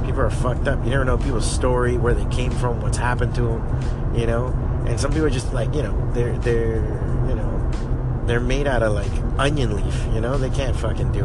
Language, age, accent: English, 30-49, American